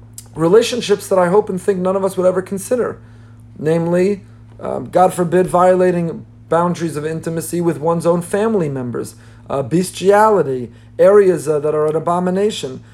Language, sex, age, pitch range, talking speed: English, male, 40-59, 160-210 Hz, 155 wpm